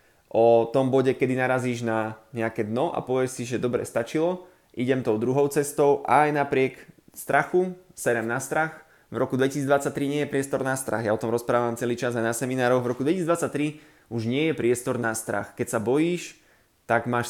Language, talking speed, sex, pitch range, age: Slovak, 190 wpm, male, 120-140 Hz, 20-39